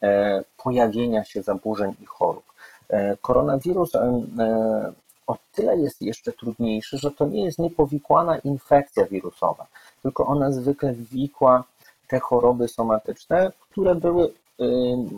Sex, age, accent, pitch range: male, 40-59, native, 105-125 Hz